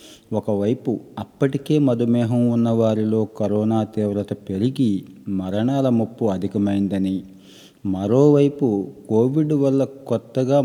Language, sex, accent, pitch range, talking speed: Telugu, male, native, 100-120 Hz, 80 wpm